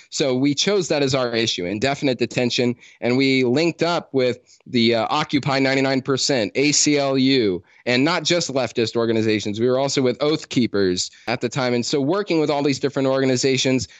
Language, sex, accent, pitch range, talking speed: English, male, American, 120-145 Hz, 175 wpm